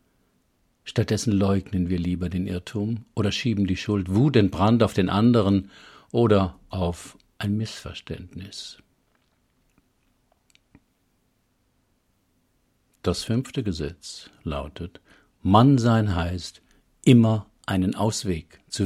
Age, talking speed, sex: 50-69, 95 wpm, male